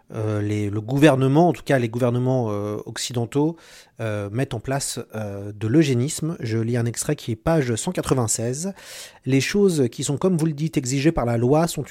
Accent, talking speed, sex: French, 200 wpm, male